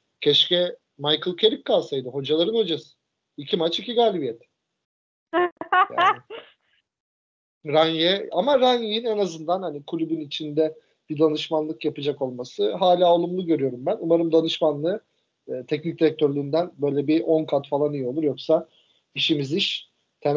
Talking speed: 120 wpm